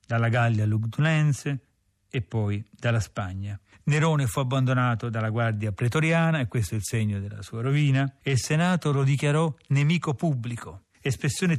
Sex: male